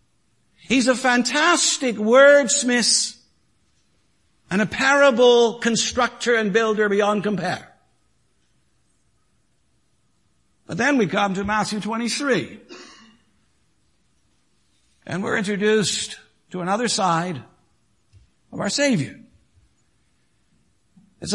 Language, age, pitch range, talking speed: English, 60-79, 200-250 Hz, 80 wpm